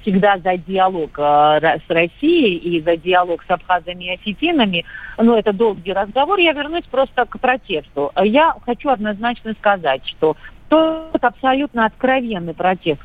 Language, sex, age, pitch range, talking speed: Russian, female, 40-59, 180-245 Hz, 145 wpm